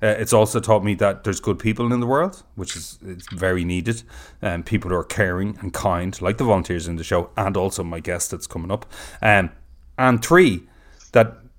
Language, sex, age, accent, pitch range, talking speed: English, male, 30-49, Irish, 90-115 Hz, 215 wpm